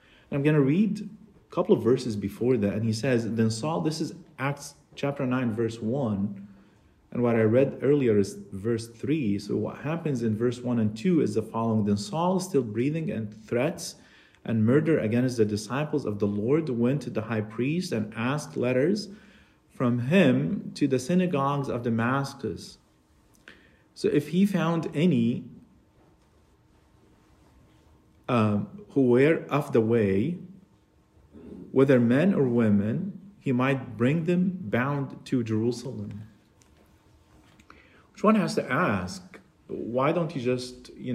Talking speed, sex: 150 wpm, male